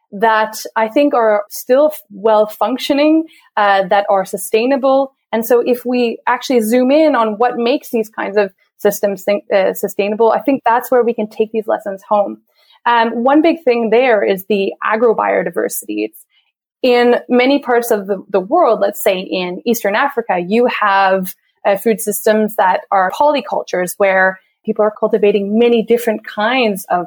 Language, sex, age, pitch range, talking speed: English, female, 20-39, 205-245 Hz, 160 wpm